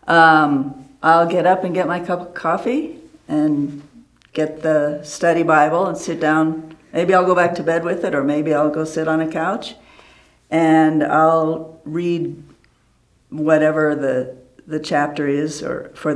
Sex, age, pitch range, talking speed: female, 60-79, 140-165 Hz, 165 wpm